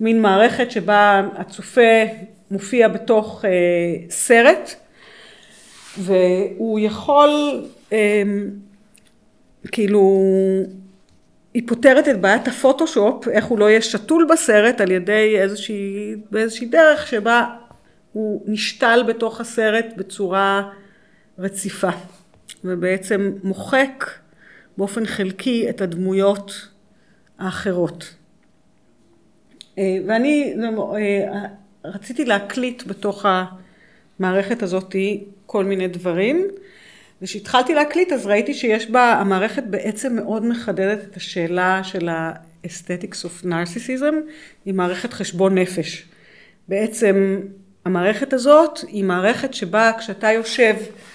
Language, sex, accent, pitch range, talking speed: Hebrew, female, native, 195-230 Hz, 95 wpm